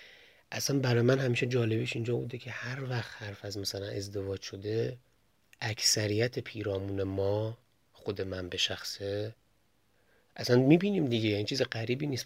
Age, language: 30-49, Persian